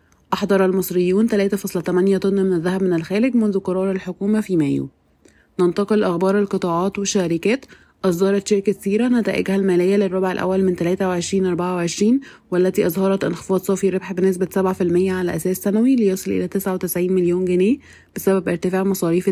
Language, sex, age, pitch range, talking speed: Arabic, female, 20-39, 180-200 Hz, 140 wpm